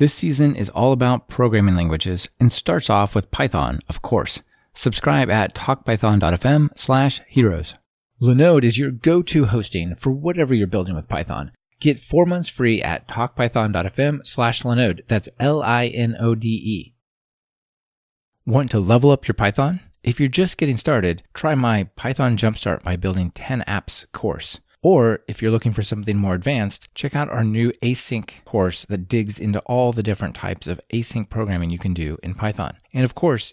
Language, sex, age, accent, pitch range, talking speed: English, male, 30-49, American, 95-130 Hz, 165 wpm